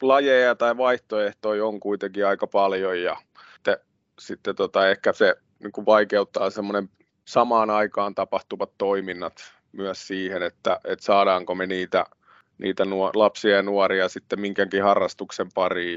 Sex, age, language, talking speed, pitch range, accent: male, 30-49, Finnish, 130 wpm, 100-110 Hz, native